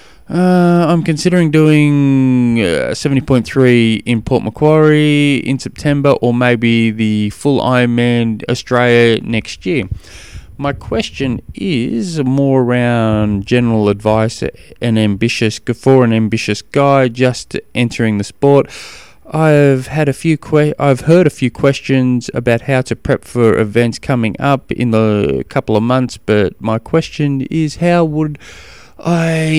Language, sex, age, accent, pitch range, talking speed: English, male, 20-39, Australian, 105-145 Hz, 135 wpm